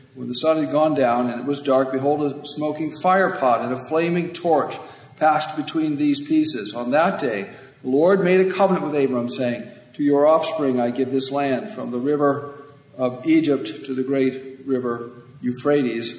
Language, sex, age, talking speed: English, male, 50-69, 185 wpm